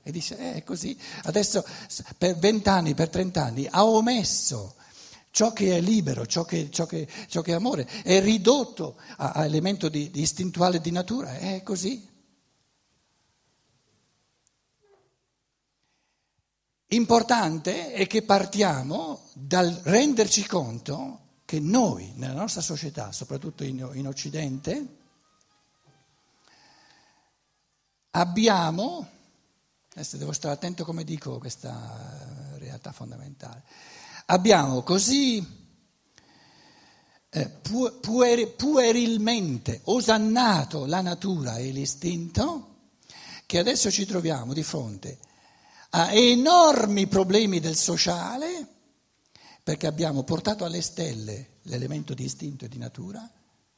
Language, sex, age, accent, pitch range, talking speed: Italian, male, 60-79, native, 140-210 Hz, 105 wpm